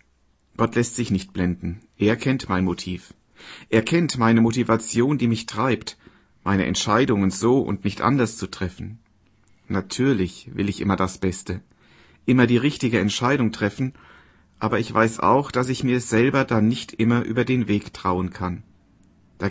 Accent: German